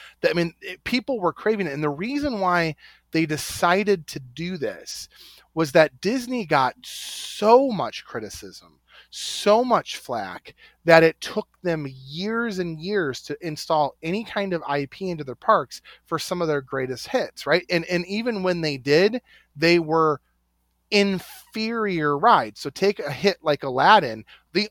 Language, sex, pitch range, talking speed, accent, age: English, male, 145-200 Hz, 165 wpm, American, 30-49